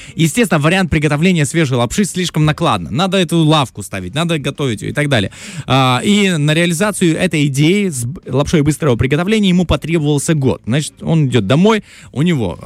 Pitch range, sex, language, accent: 115-160 Hz, male, Russian, native